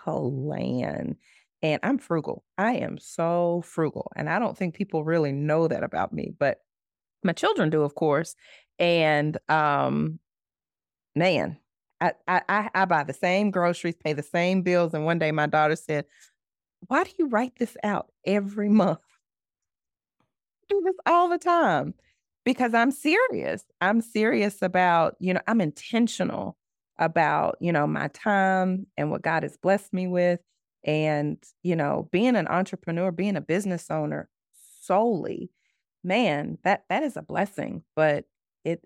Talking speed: 155 wpm